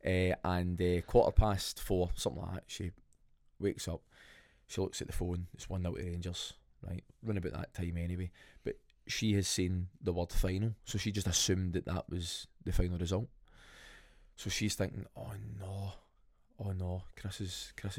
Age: 20-39